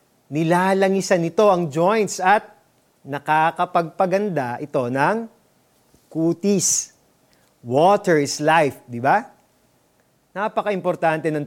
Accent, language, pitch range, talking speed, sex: native, Filipino, 155-210 Hz, 85 wpm, male